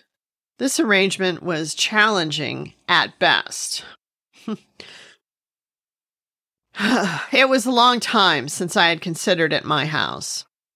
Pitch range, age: 170-215 Hz, 40-59